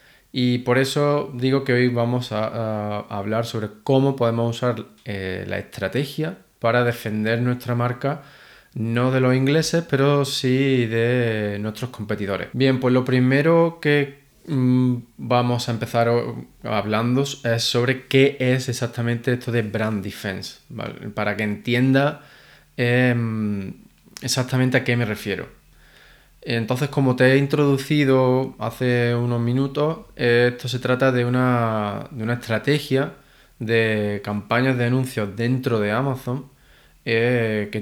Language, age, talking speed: Spanish, 20-39, 130 wpm